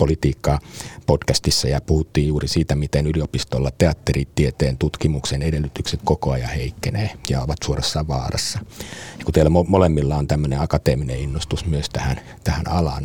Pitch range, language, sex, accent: 70-85 Hz, Finnish, male, native